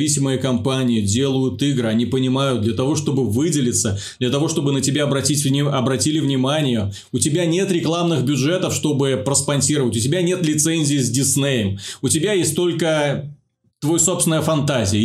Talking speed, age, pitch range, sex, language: 150 wpm, 20-39, 120-150 Hz, male, Russian